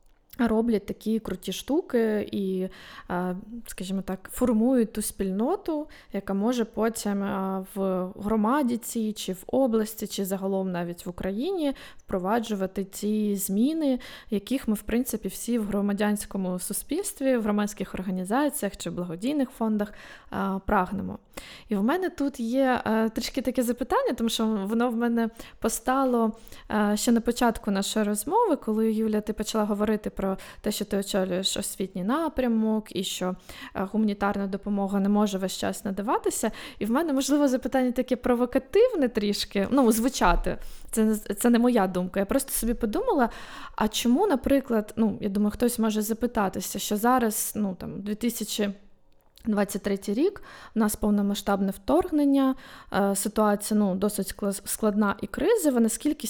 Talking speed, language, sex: 135 wpm, Ukrainian, female